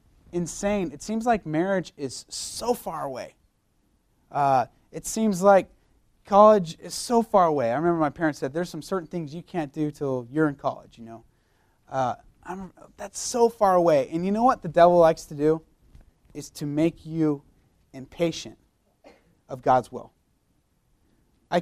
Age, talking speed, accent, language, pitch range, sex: 30-49, 165 wpm, American, English, 145-185 Hz, male